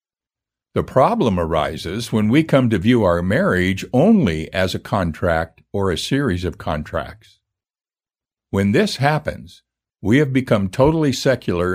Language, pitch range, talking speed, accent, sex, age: English, 90-125 Hz, 140 wpm, American, male, 60-79